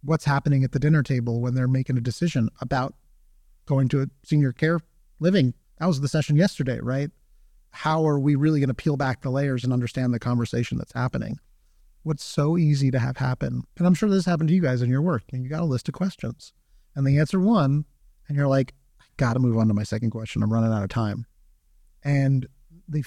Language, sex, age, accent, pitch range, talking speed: English, male, 30-49, American, 125-160 Hz, 220 wpm